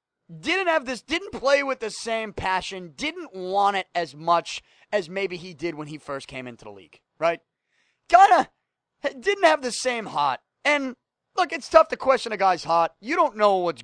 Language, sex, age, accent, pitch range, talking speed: English, male, 30-49, American, 175-270 Hz, 195 wpm